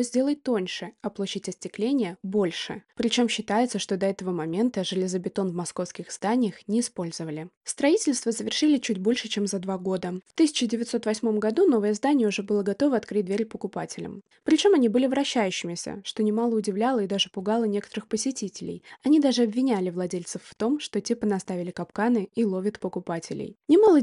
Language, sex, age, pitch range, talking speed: Russian, female, 20-39, 190-240 Hz, 155 wpm